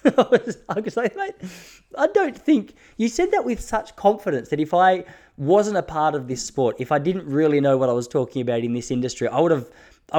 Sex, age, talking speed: male, 20-39, 235 wpm